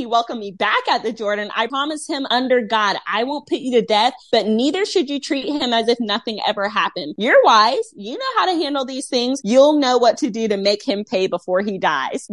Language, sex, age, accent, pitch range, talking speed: English, female, 20-39, American, 225-305 Hz, 240 wpm